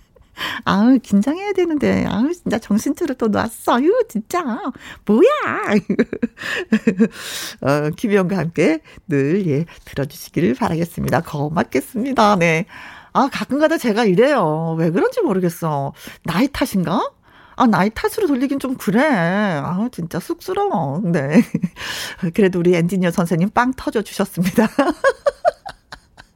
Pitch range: 195-290 Hz